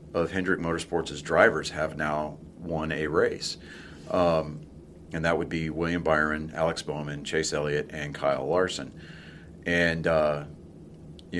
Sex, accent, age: male, American, 40-59